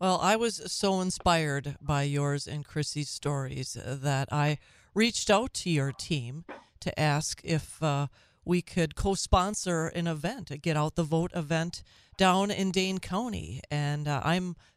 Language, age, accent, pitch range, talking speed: English, 40-59, American, 150-190 Hz, 160 wpm